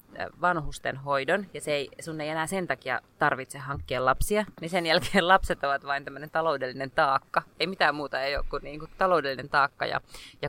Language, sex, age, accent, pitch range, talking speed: Finnish, female, 20-39, native, 140-180 Hz, 195 wpm